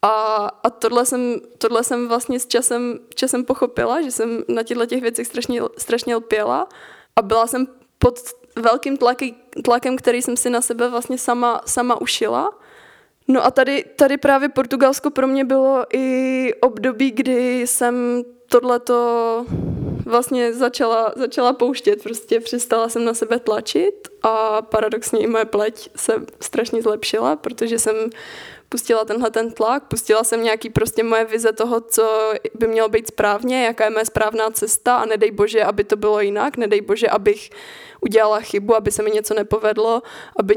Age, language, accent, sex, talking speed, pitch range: 20-39, Czech, native, female, 160 wpm, 220-255 Hz